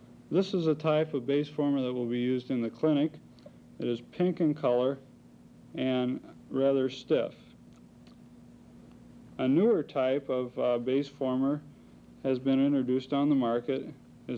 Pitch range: 120-150 Hz